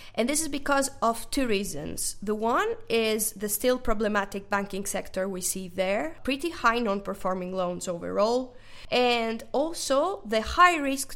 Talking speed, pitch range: 145 wpm, 205-275 Hz